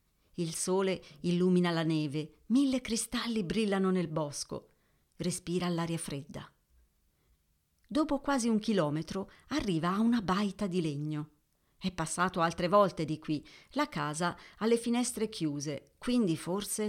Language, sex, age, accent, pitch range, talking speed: Italian, female, 50-69, native, 155-220 Hz, 130 wpm